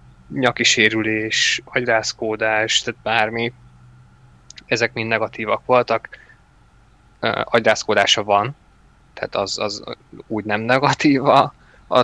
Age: 20-39